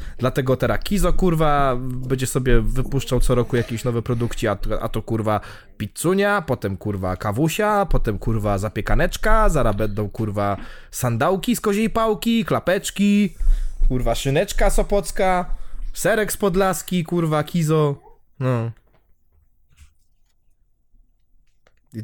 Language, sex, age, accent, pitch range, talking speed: Polish, male, 20-39, native, 110-185 Hz, 110 wpm